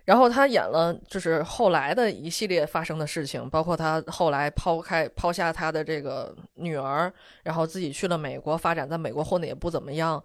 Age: 20-39